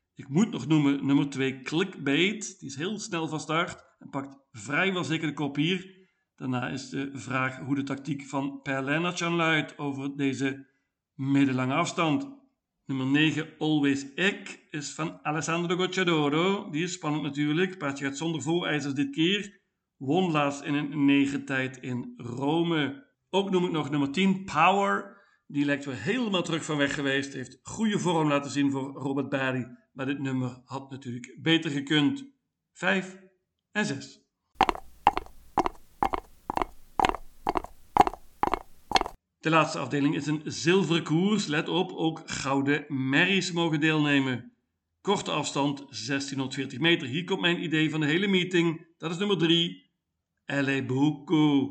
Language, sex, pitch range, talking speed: Dutch, male, 140-170 Hz, 145 wpm